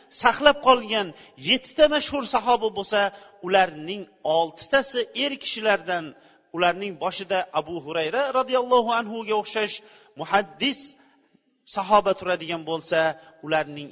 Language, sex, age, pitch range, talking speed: Bulgarian, male, 40-59, 175-235 Hz, 105 wpm